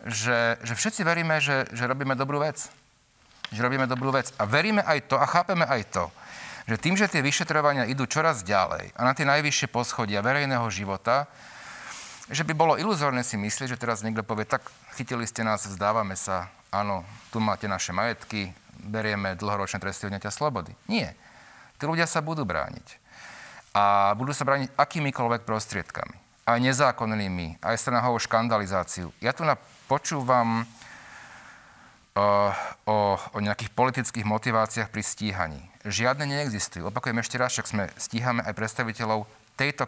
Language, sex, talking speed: Slovak, male, 145 wpm